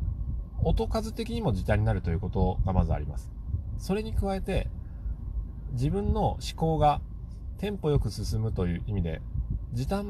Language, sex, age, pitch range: Japanese, male, 30-49, 75-100 Hz